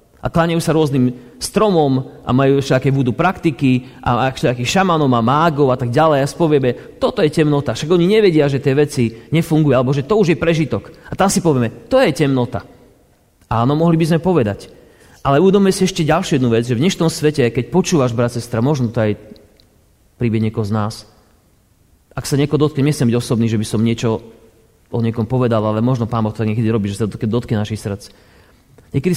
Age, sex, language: 30-49, male, Slovak